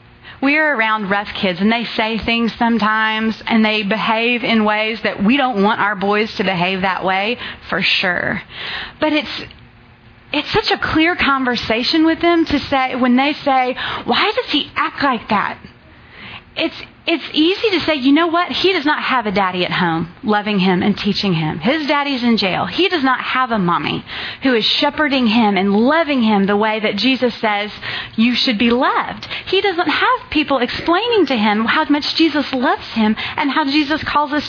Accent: American